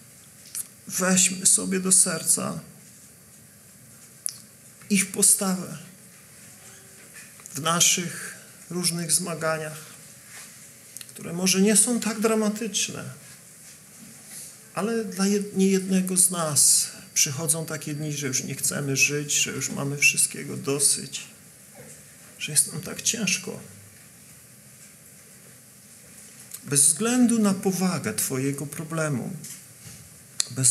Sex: male